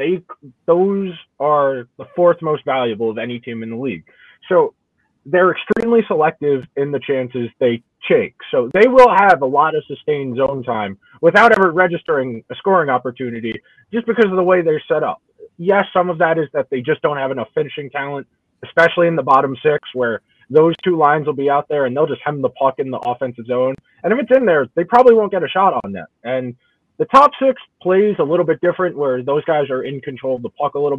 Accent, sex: American, male